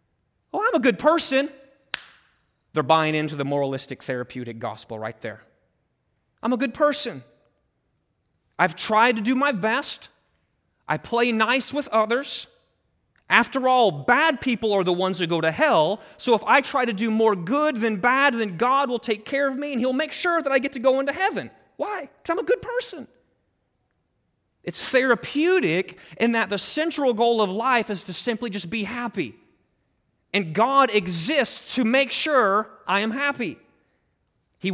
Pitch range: 205-275 Hz